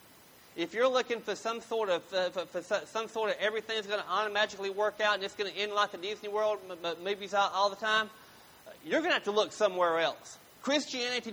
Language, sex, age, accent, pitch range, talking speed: English, male, 30-49, American, 165-235 Hz, 235 wpm